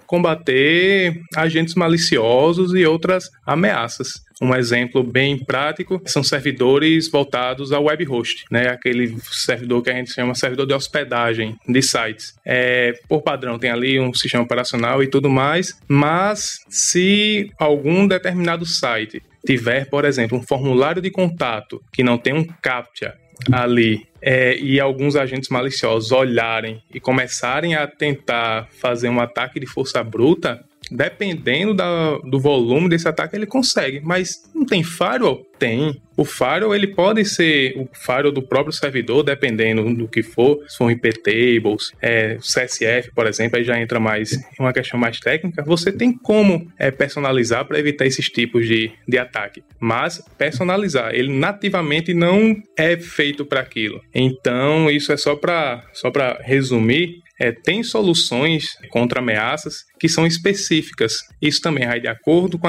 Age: 20-39